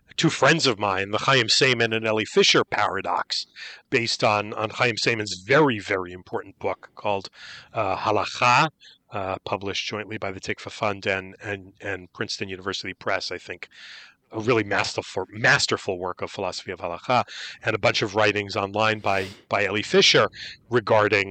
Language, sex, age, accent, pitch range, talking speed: English, male, 40-59, American, 110-145 Hz, 165 wpm